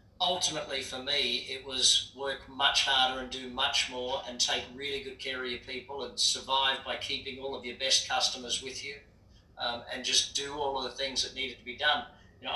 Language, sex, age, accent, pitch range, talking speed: English, male, 40-59, Australian, 120-140 Hz, 220 wpm